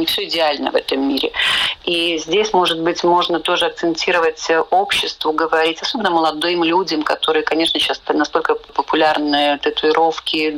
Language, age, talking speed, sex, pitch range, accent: Russian, 40-59, 135 wpm, female, 155-185 Hz, native